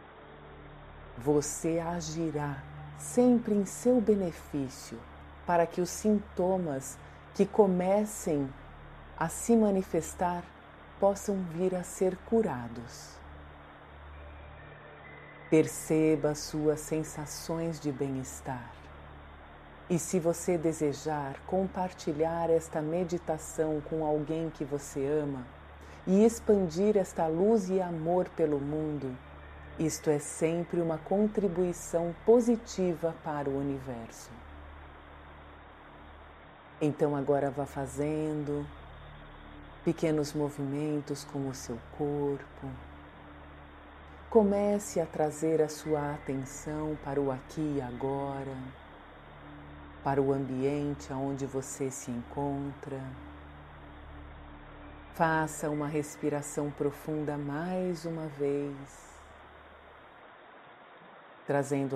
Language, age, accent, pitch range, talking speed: Portuguese, 40-59, Brazilian, 110-165 Hz, 85 wpm